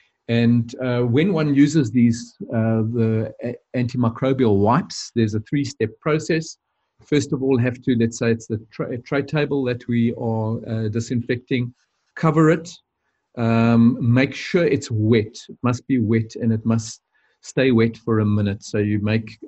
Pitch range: 110-130 Hz